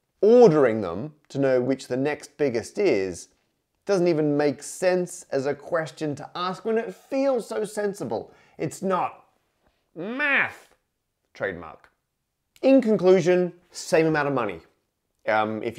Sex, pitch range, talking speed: male, 130-180 Hz, 135 wpm